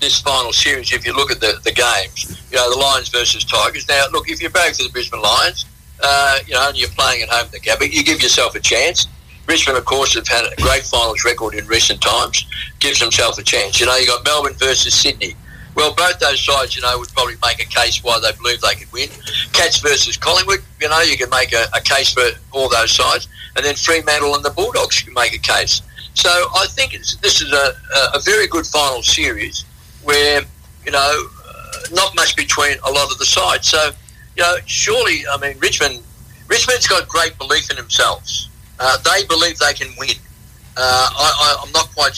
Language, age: English, 50-69